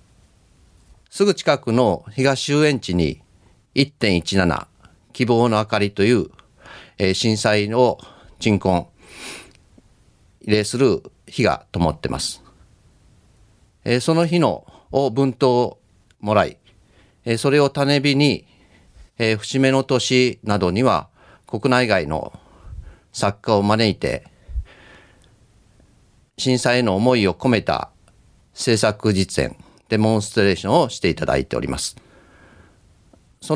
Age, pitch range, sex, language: 40-59, 95-130 Hz, male, Japanese